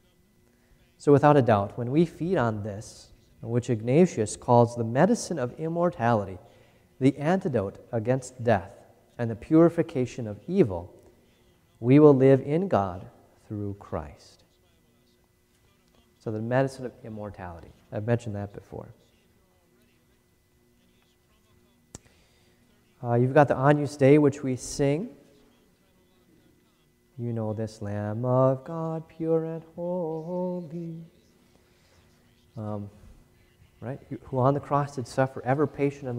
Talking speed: 115 wpm